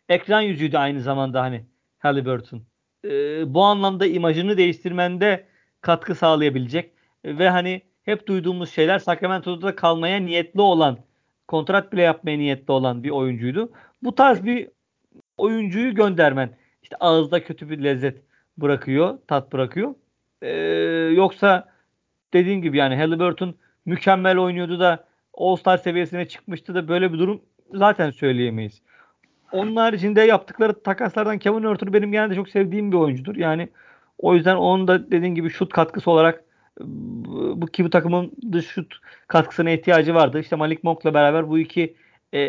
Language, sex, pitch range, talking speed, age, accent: Turkish, male, 155-195 Hz, 140 wpm, 50-69, native